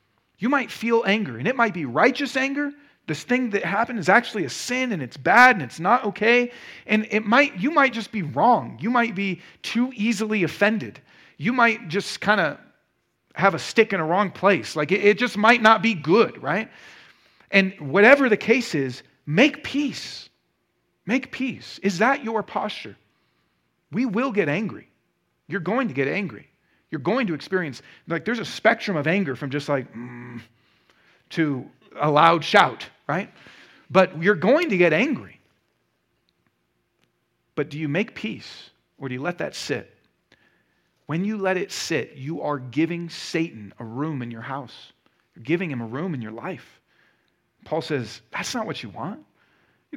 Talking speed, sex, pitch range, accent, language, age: 175 wpm, male, 140-225 Hz, American, English, 40-59